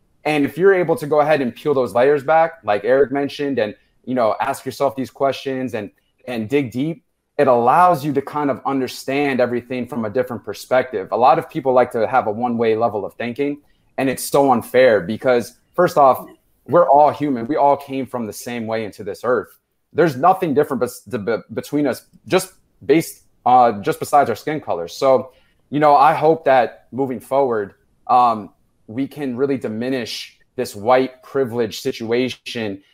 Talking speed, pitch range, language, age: 180 wpm, 120-145 Hz, English, 30-49